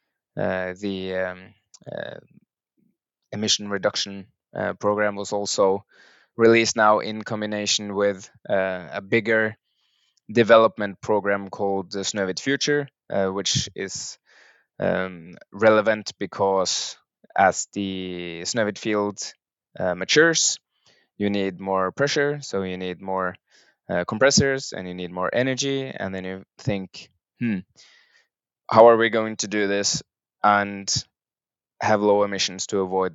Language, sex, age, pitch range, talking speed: English, male, 20-39, 95-115 Hz, 125 wpm